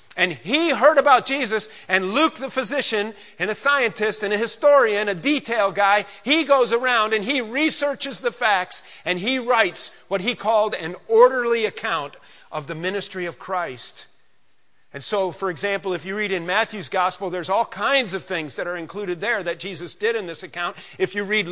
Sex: male